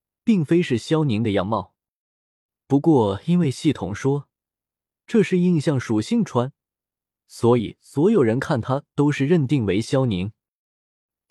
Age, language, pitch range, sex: 20-39, Chinese, 115-165 Hz, male